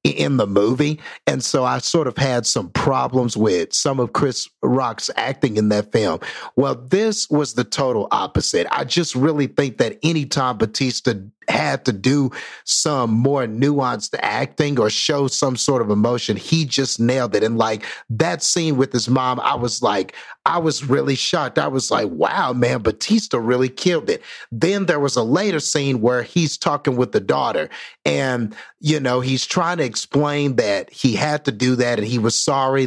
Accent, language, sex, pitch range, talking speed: American, English, male, 120-150 Hz, 190 wpm